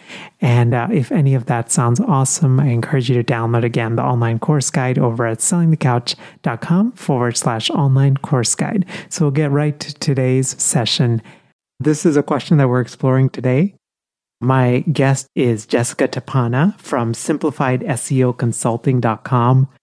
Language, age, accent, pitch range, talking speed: English, 30-49, American, 115-145 Hz, 145 wpm